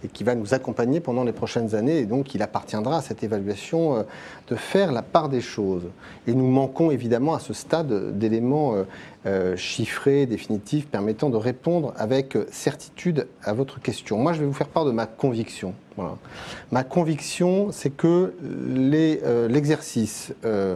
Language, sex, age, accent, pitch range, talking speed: French, male, 40-59, French, 110-145 Hz, 160 wpm